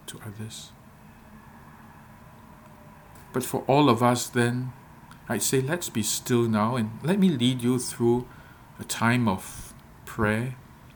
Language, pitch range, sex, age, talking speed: English, 110-125 Hz, male, 50-69, 130 wpm